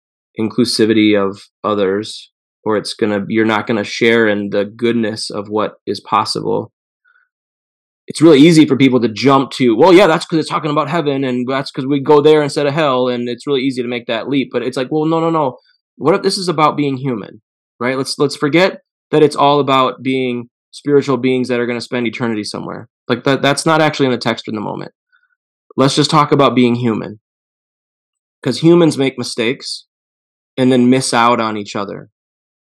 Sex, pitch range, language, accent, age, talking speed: male, 115-140 Hz, English, American, 20-39, 200 wpm